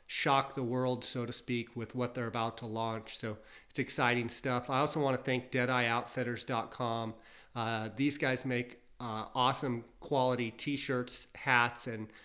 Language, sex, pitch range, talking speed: English, male, 115-130 Hz, 155 wpm